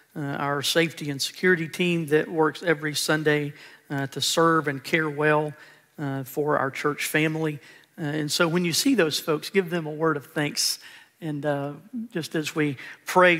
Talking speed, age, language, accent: 185 wpm, 50-69, English, American